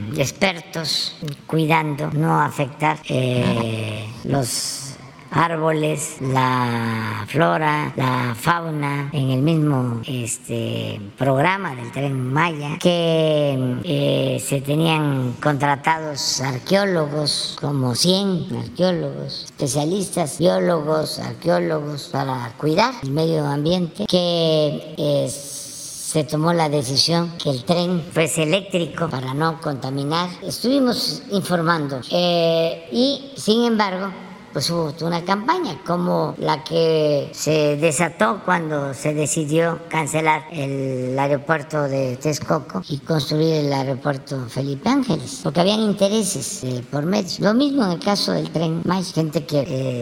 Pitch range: 140-175 Hz